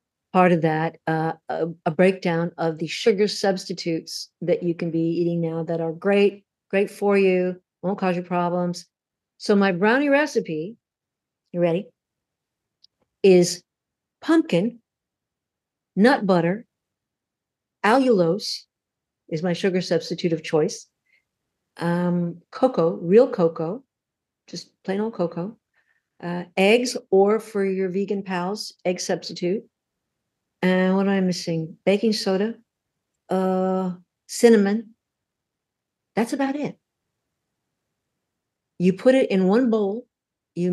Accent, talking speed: American, 120 wpm